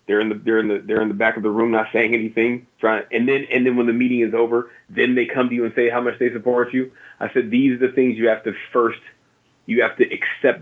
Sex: male